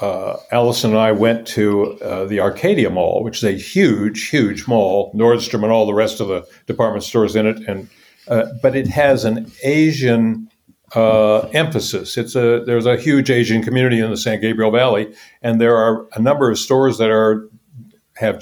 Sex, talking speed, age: male, 190 wpm, 60-79